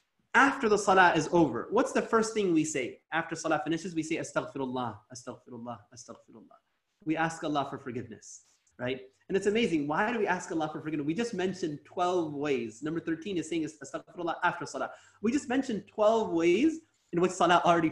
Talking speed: 190 wpm